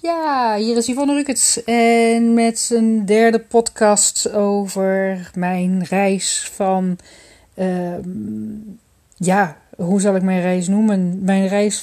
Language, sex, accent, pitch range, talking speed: Dutch, female, Dutch, 195-225 Hz, 120 wpm